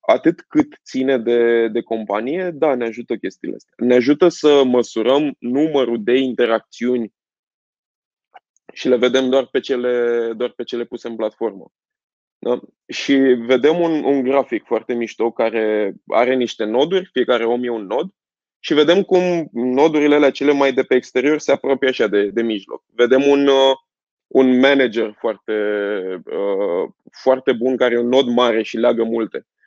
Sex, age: male, 20-39